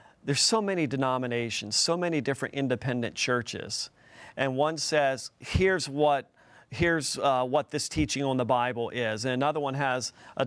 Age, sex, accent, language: 40-59, male, American, English